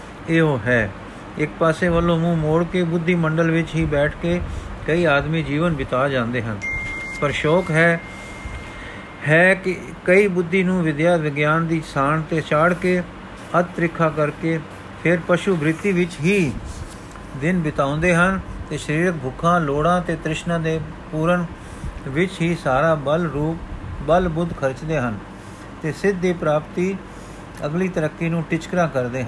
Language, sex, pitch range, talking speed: Punjabi, male, 145-170 Hz, 125 wpm